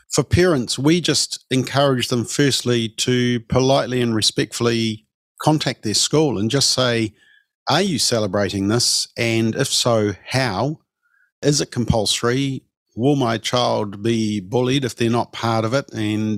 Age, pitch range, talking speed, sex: 50-69, 105-130 Hz, 145 wpm, male